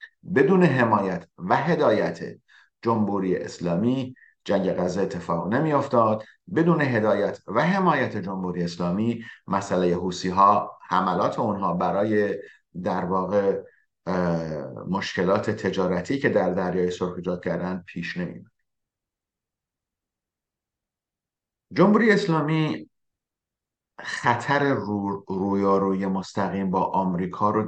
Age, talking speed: 50-69, 95 wpm